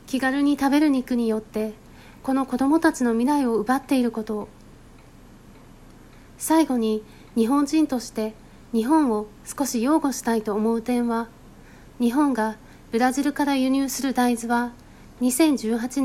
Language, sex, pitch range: Japanese, female, 220-280 Hz